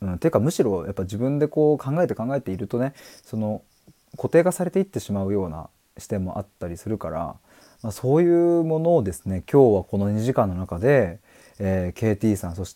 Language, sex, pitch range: Japanese, male, 90-125 Hz